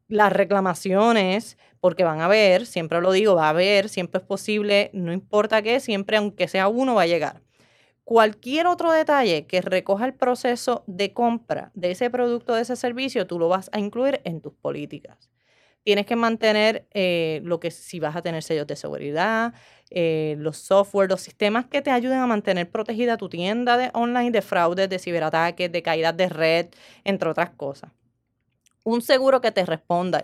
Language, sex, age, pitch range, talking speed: Spanish, female, 20-39, 170-225 Hz, 185 wpm